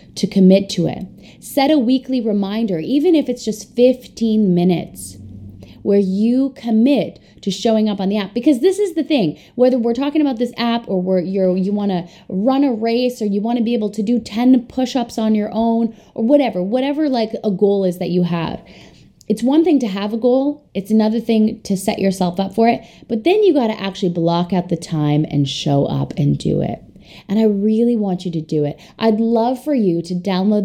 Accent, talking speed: American, 215 wpm